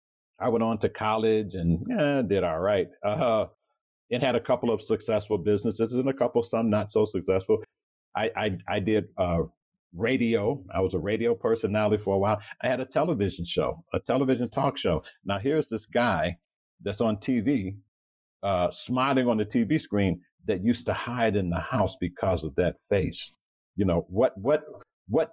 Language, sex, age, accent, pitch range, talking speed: English, male, 50-69, American, 90-115 Hz, 180 wpm